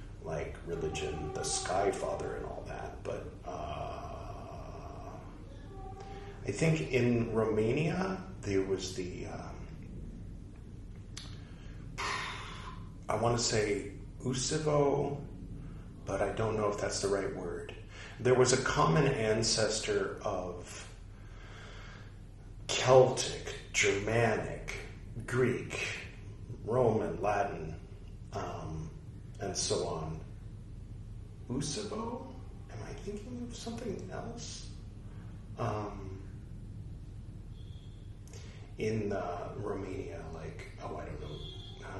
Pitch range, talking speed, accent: 95-110 Hz, 90 wpm, American